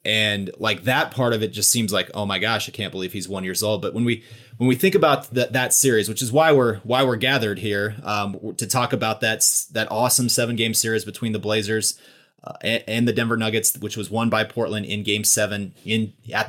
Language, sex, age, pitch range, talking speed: English, male, 30-49, 110-125 Hz, 240 wpm